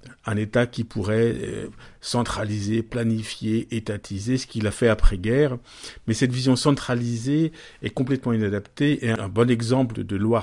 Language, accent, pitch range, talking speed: French, French, 110-135 Hz, 145 wpm